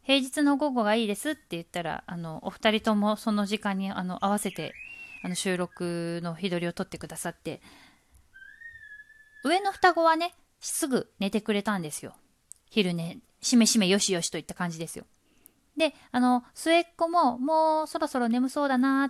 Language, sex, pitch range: Japanese, female, 185-285 Hz